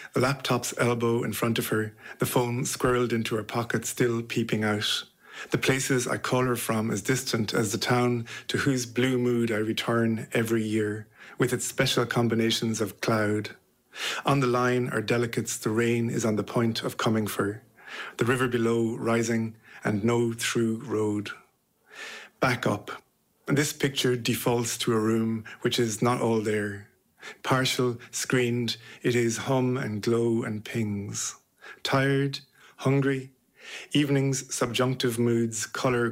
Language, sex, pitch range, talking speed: English, male, 110-125 Hz, 155 wpm